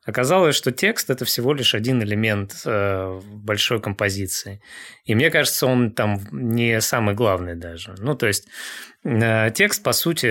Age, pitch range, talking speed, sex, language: 20-39, 105-125 Hz, 145 wpm, male, Russian